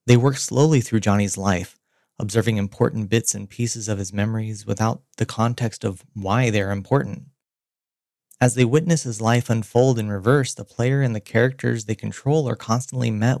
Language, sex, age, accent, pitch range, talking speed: English, male, 20-39, American, 105-130 Hz, 180 wpm